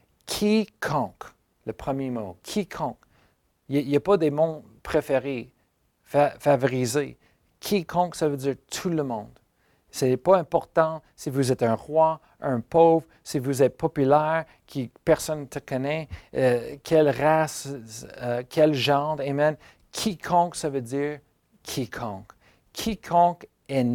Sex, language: male, French